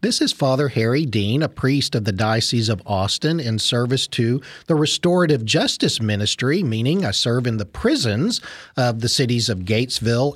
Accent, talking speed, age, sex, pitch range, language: American, 175 wpm, 50-69, male, 115-150 Hz, English